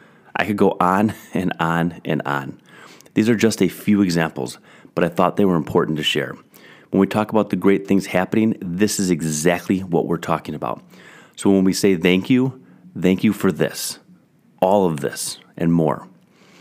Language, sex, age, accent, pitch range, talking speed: English, male, 30-49, American, 85-105 Hz, 190 wpm